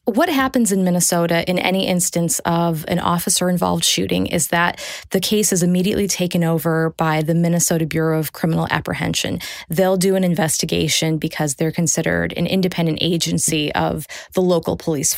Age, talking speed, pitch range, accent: 20-39, 160 wpm, 165-190 Hz, American